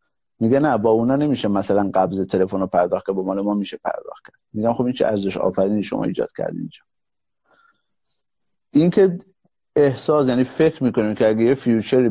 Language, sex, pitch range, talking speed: Persian, male, 105-130 Hz, 180 wpm